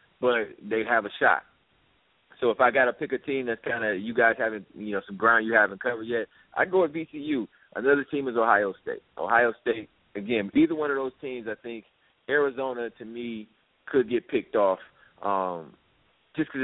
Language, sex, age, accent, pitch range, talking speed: English, male, 30-49, American, 110-145 Hz, 200 wpm